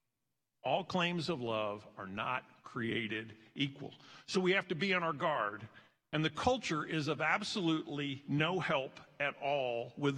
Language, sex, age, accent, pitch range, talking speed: English, male, 50-69, American, 135-175 Hz, 160 wpm